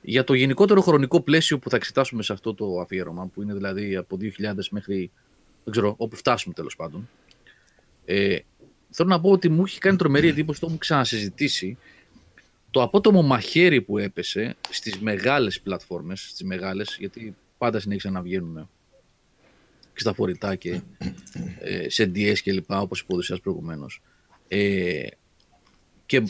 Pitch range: 100-135 Hz